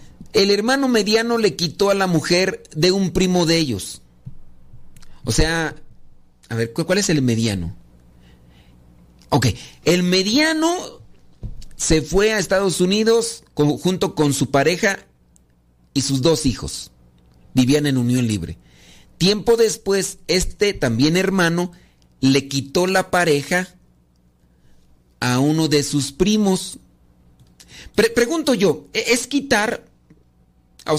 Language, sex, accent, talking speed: Spanish, male, Mexican, 115 wpm